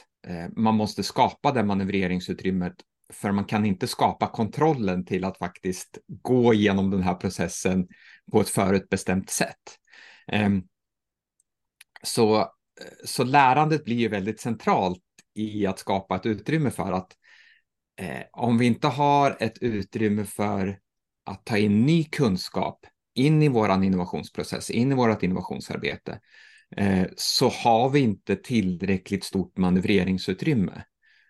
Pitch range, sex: 95-120 Hz, male